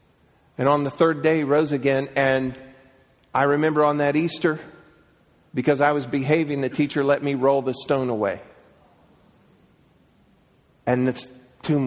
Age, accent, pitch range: 50-69, American, 115-135 Hz